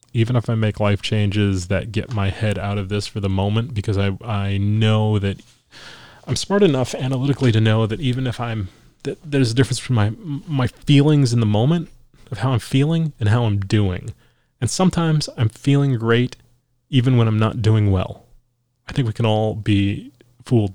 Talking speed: 195 wpm